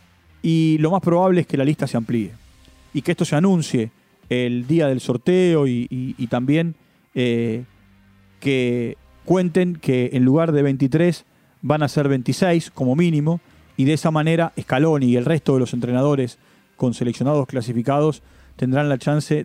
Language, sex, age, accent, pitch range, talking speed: Spanish, male, 40-59, Argentinian, 130-170 Hz, 165 wpm